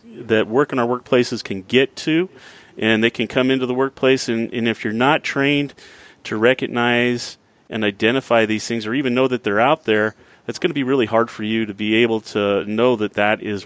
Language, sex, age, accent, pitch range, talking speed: English, male, 30-49, American, 105-120 Hz, 220 wpm